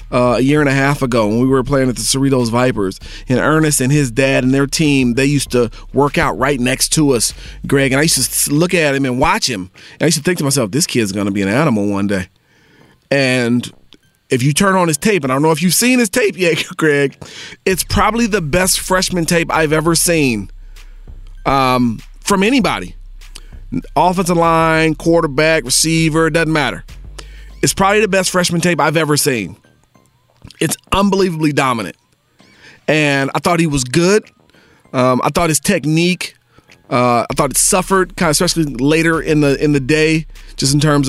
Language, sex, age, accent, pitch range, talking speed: English, male, 40-59, American, 130-165 Hz, 200 wpm